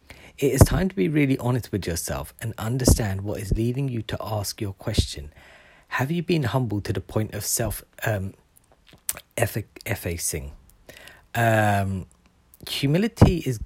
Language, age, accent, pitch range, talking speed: English, 40-59, British, 95-130 Hz, 140 wpm